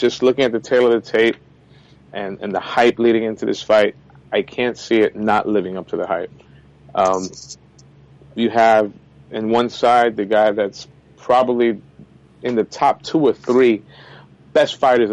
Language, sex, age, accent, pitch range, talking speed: English, male, 30-49, American, 100-115 Hz, 175 wpm